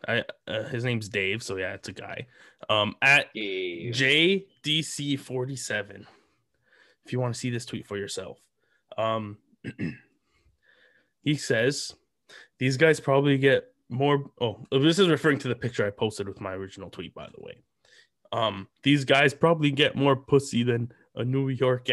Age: 20-39